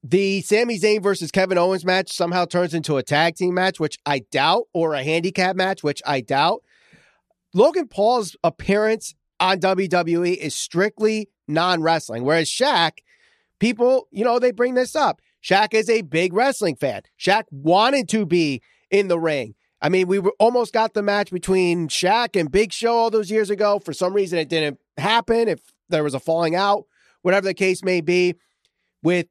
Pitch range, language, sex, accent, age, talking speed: 165-210 Hz, English, male, American, 30-49, 180 wpm